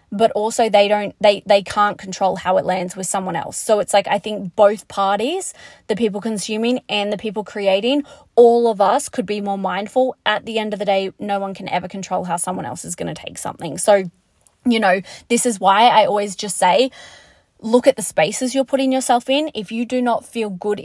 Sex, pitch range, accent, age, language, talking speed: female, 205-250 Hz, Australian, 20-39, English, 225 wpm